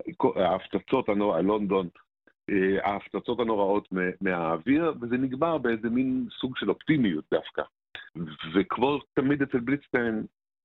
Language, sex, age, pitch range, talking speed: Hebrew, male, 50-69, 95-110 Hz, 90 wpm